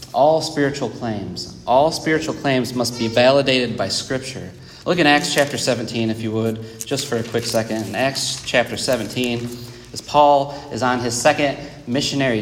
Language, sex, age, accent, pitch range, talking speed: English, male, 30-49, American, 125-175 Hz, 170 wpm